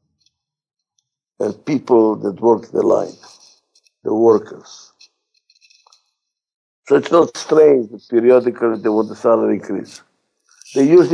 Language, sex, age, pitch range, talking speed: English, male, 60-79, 120-195 Hz, 115 wpm